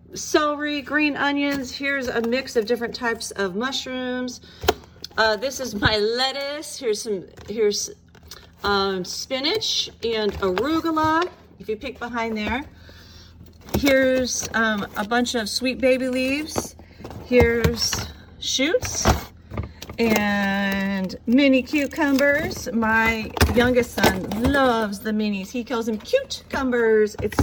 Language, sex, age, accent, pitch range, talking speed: English, female, 40-59, American, 215-275 Hz, 115 wpm